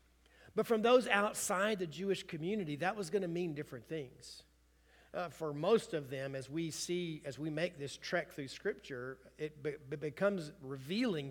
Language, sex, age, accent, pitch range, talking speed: English, male, 50-69, American, 140-205 Hz, 175 wpm